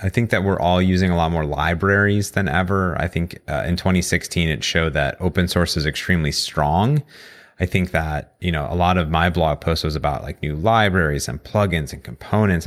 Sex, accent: male, American